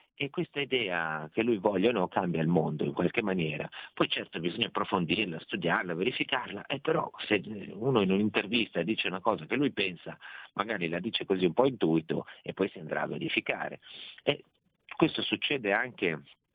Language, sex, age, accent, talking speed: Italian, male, 40-59, native, 180 wpm